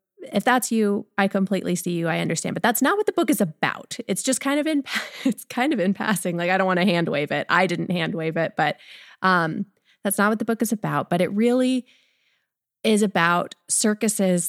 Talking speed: 230 wpm